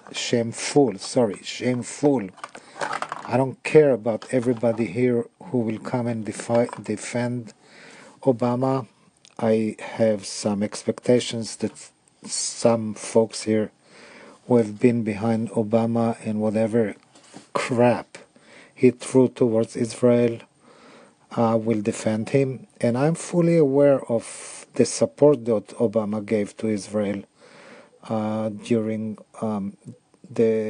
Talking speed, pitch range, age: 105 wpm, 110-125 Hz, 50-69